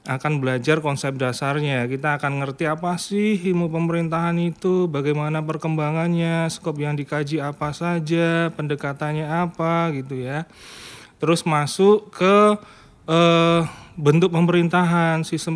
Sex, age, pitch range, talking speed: male, 30-49, 145-175 Hz, 115 wpm